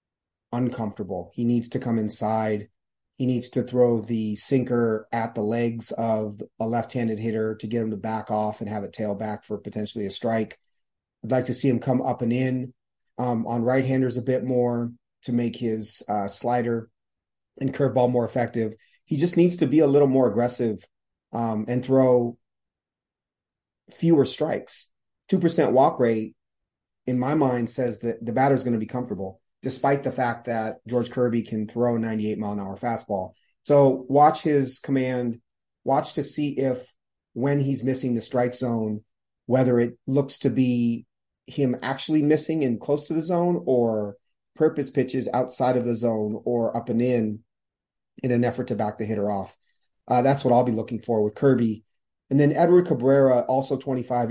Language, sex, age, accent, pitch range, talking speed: English, male, 30-49, American, 110-130 Hz, 175 wpm